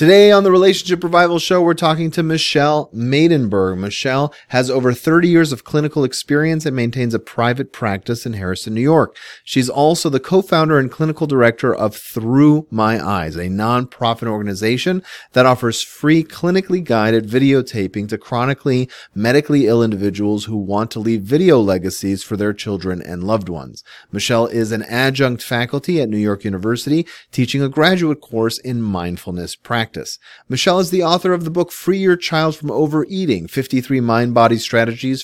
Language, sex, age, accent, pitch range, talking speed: English, male, 30-49, American, 110-150 Hz, 165 wpm